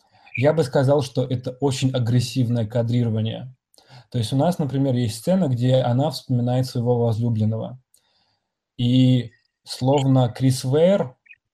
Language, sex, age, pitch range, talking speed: Russian, male, 20-39, 125-150 Hz, 125 wpm